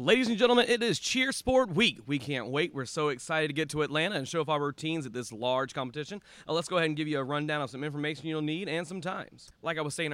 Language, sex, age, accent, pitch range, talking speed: English, male, 30-49, American, 115-150 Hz, 285 wpm